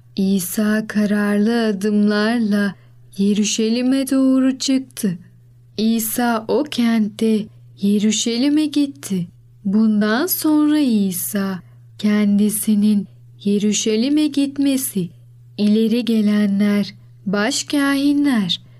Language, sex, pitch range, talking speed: Turkish, female, 200-260 Hz, 65 wpm